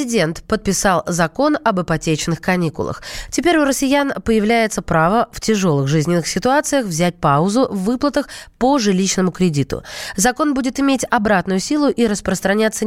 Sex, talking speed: female, 135 wpm